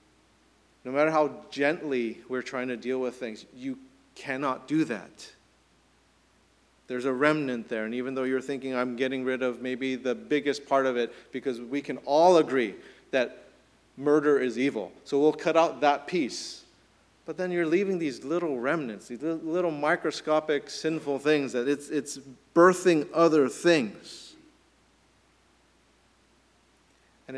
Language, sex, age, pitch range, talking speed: English, male, 40-59, 125-155 Hz, 145 wpm